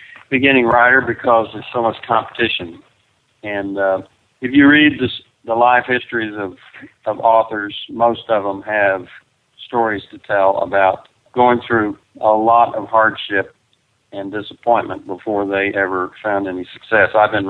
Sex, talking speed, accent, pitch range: male, 145 wpm, American, 100-120 Hz